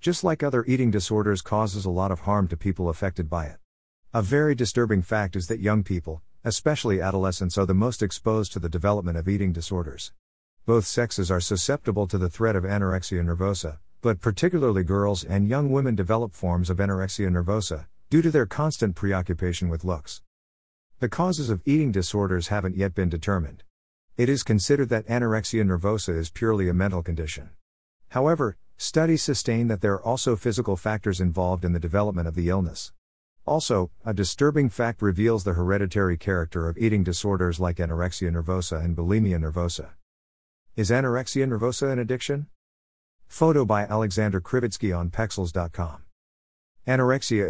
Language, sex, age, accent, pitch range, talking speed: English, male, 50-69, American, 90-115 Hz, 160 wpm